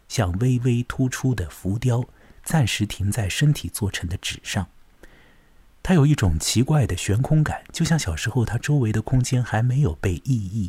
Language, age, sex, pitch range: Chinese, 50-69, male, 95-145 Hz